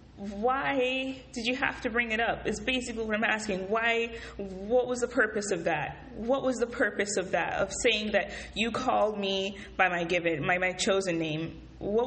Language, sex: English, female